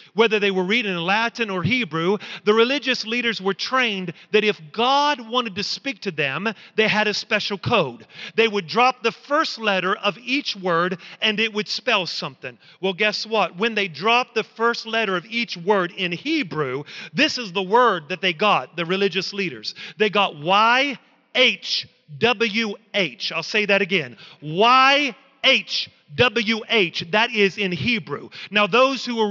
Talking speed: 165 wpm